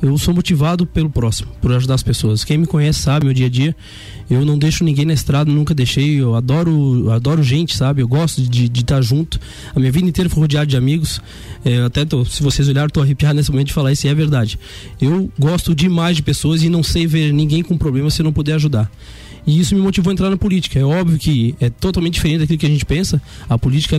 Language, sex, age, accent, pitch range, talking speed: Portuguese, male, 20-39, Brazilian, 130-165 Hz, 245 wpm